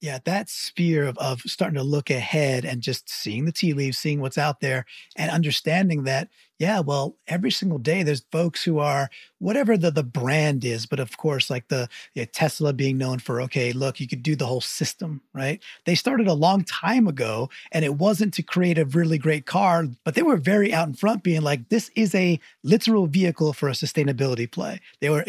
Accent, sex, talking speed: American, male, 215 wpm